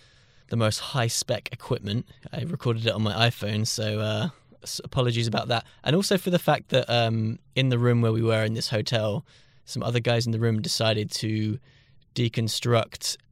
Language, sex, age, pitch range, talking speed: English, male, 20-39, 110-130 Hz, 180 wpm